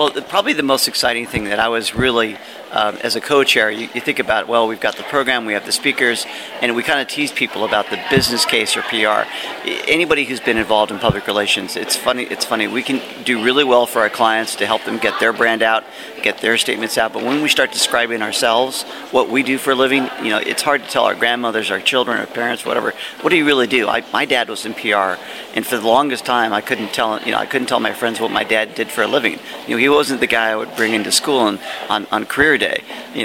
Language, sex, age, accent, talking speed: English, male, 40-59, American, 260 wpm